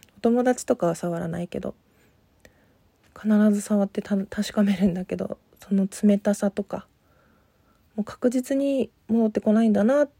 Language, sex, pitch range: Japanese, female, 180-215 Hz